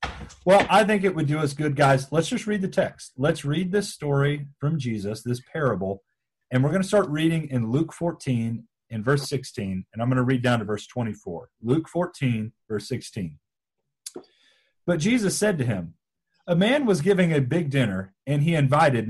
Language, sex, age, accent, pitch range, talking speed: English, male, 40-59, American, 130-185 Hz, 195 wpm